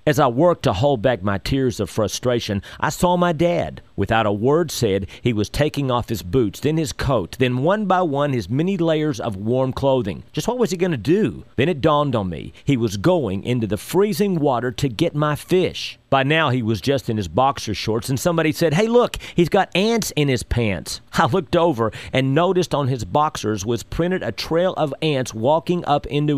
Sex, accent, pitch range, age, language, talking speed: male, American, 110-160 Hz, 40-59, English, 220 wpm